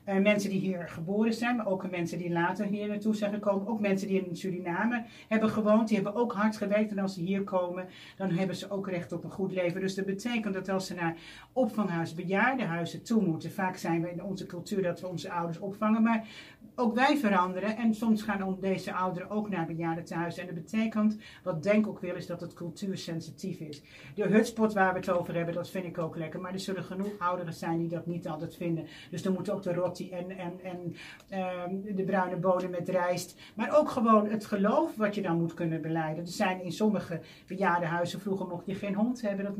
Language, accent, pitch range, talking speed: Dutch, Dutch, 175-210 Hz, 225 wpm